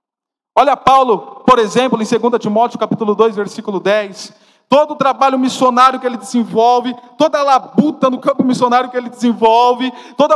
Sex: male